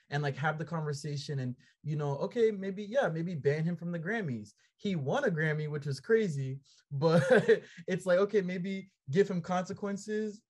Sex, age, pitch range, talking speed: male, 20-39, 140-175 Hz, 185 wpm